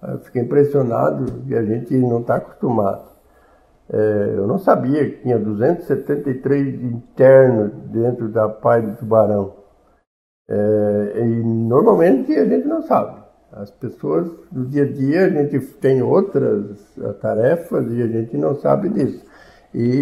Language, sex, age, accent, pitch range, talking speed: Portuguese, male, 60-79, Brazilian, 105-135 Hz, 140 wpm